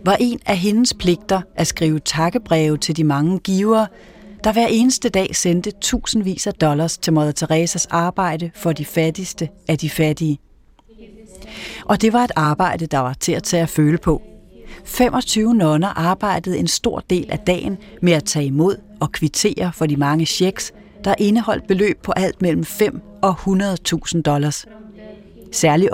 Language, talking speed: Danish, 165 wpm